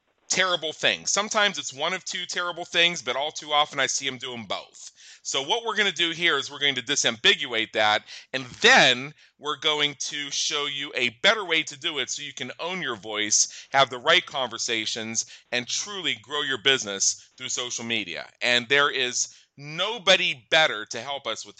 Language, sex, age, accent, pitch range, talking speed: English, male, 30-49, American, 125-170 Hz, 195 wpm